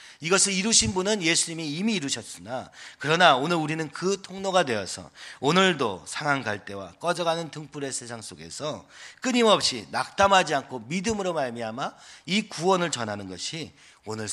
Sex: male